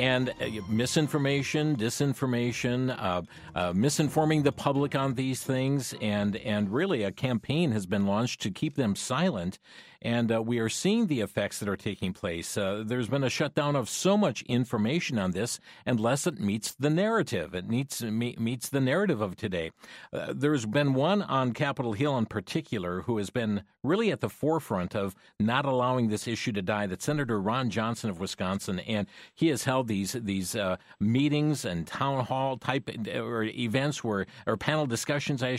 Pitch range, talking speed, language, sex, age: 105-140 Hz, 180 wpm, English, male, 50-69